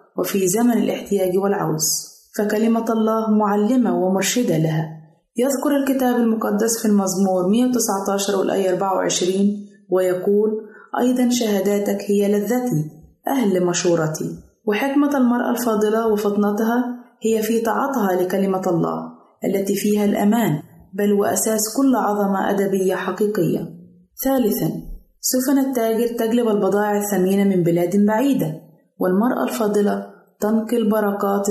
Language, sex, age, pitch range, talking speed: Arabic, female, 20-39, 190-225 Hz, 105 wpm